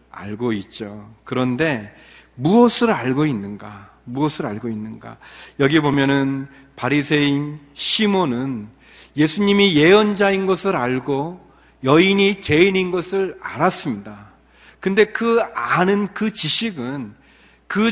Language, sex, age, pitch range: Korean, male, 40-59, 130-210 Hz